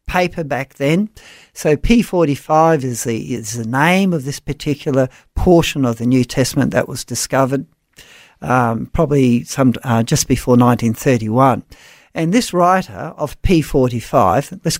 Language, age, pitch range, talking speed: English, 50-69, 135-185 Hz, 140 wpm